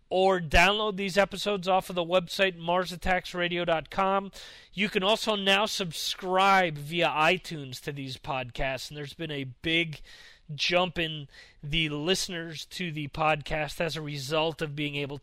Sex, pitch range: male, 135-170 Hz